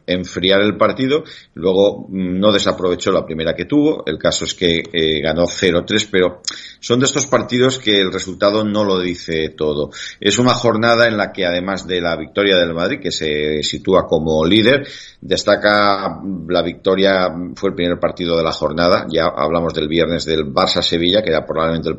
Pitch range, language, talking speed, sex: 85-100 Hz, Spanish, 180 wpm, male